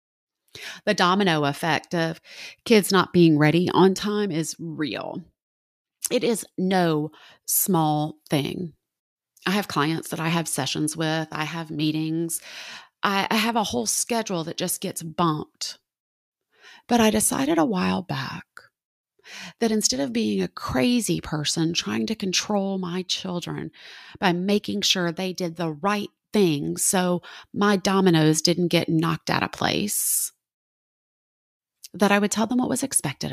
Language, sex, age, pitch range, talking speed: English, female, 30-49, 155-195 Hz, 145 wpm